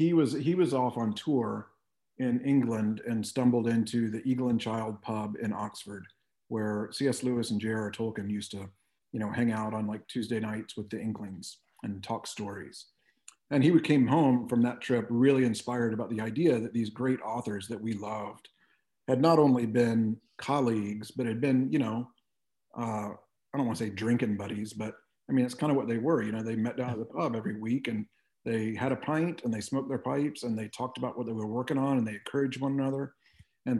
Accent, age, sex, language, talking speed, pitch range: American, 40-59, male, English, 215 wpm, 110-130 Hz